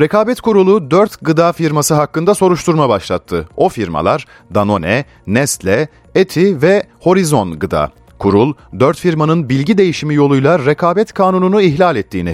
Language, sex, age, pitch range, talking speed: Turkish, male, 40-59, 95-160 Hz, 125 wpm